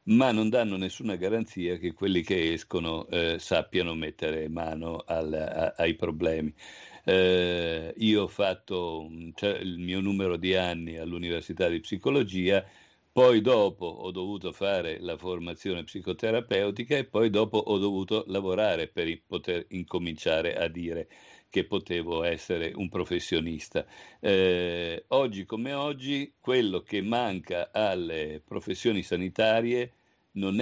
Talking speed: 120 wpm